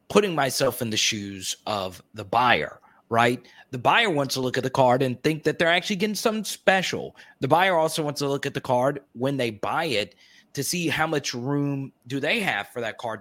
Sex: male